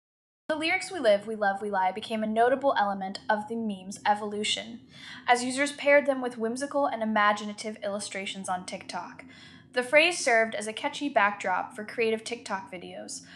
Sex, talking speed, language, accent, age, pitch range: female, 170 wpm, English, American, 10-29, 200-245 Hz